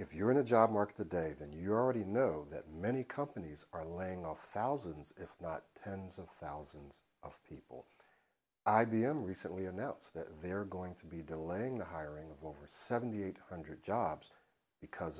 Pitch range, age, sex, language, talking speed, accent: 80-105 Hz, 60-79, male, English, 160 wpm, American